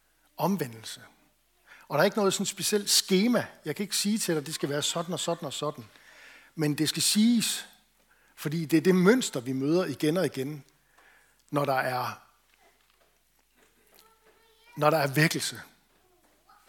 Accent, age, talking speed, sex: native, 60-79, 160 wpm, male